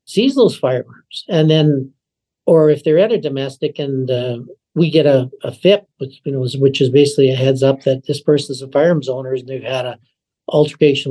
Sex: male